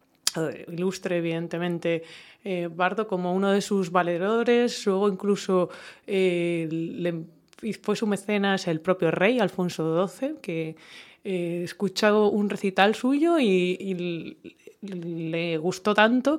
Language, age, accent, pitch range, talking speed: English, 20-39, Spanish, 175-210 Hz, 115 wpm